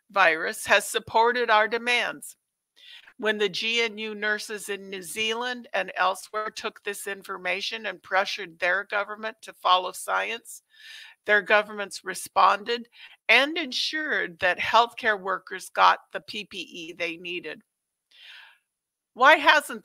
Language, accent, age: English, American, 50-69